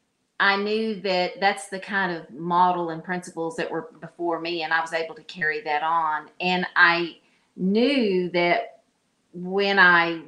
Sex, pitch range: female, 165-190 Hz